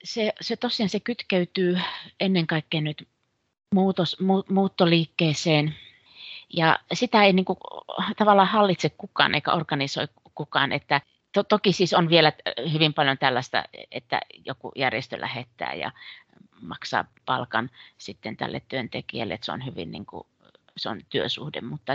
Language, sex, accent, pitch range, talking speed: Finnish, female, native, 135-170 Hz, 135 wpm